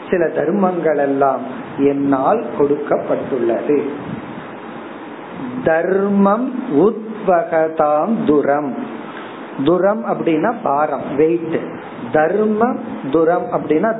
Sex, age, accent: male, 50-69, native